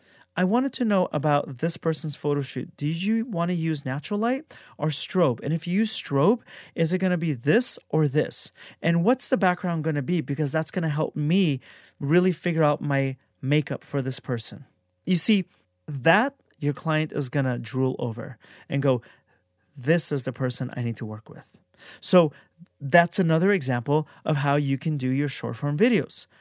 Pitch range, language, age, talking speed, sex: 140-175 Hz, English, 30-49, 195 wpm, male